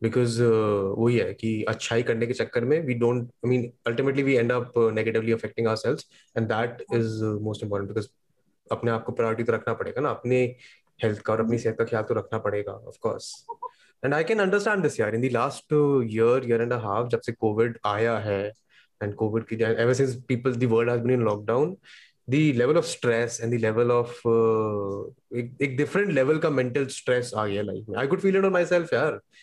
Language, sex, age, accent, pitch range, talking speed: Hindi, male, 20-39, native, 115-140 Hz, 65 wpm